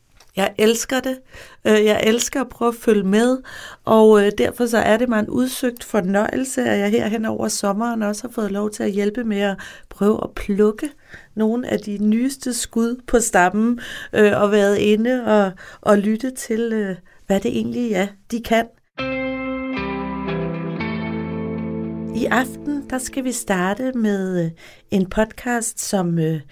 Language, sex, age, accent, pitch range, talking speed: Danish, female, 30-49, native, 205-260 Hz, 150 wpm